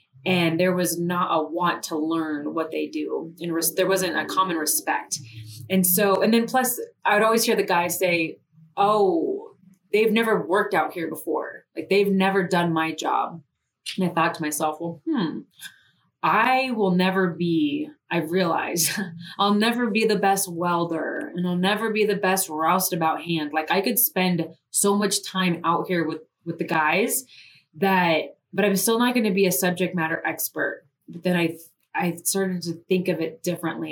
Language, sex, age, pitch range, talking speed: English, female, 20-39, 160-195 Hz, 185 wpm